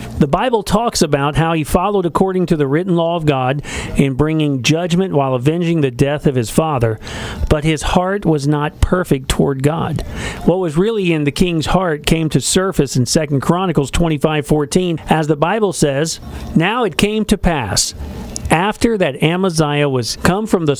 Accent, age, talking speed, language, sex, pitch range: American, 50-69, 180 wpm, English, male, 145-185 Hz